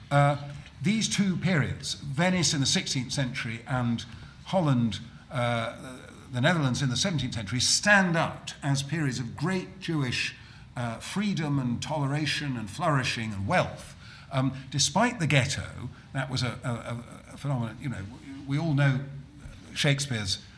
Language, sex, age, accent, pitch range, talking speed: English, male, 50-69, British, 120-155 Hz, 145 wpm